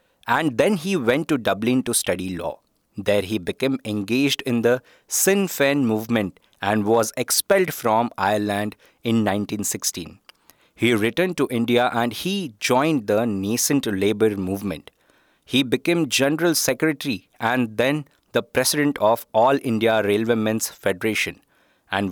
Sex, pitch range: male, 105-140 Hz